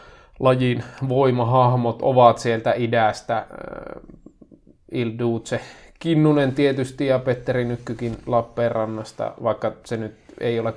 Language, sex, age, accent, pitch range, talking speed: Finnish, male, 20-39, native, 115-130 Hz, 100 wpm